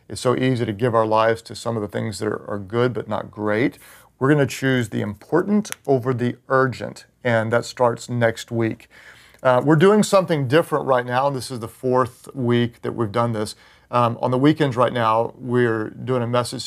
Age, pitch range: 40-59, 110-125 Hz